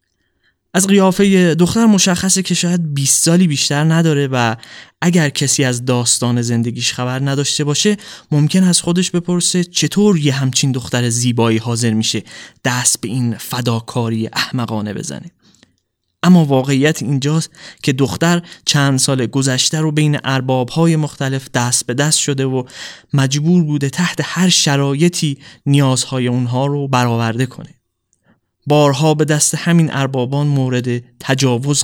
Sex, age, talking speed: male, 20-39, 130 wpm